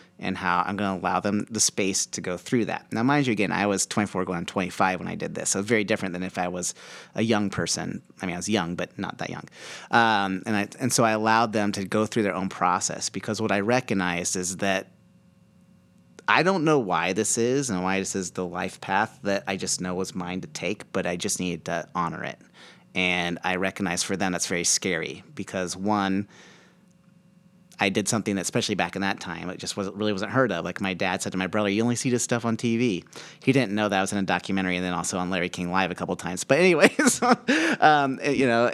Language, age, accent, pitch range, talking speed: English, 30-49, American, 95-120 Hz, 250 wpm